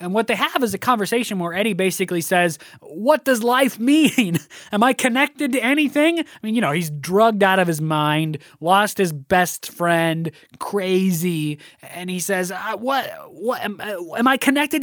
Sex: male